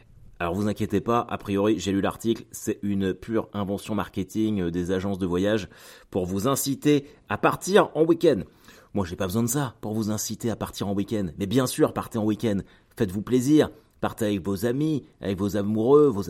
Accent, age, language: French, 30-49, French